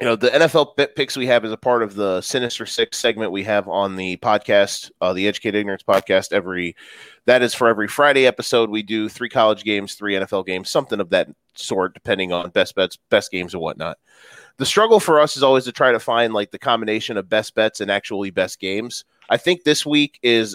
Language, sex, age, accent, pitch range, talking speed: English, male, 30-49, American, 105-135 Hz, 230 wpm